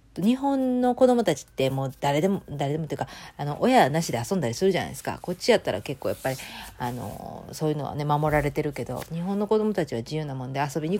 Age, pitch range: 40-59, 145-195 Hz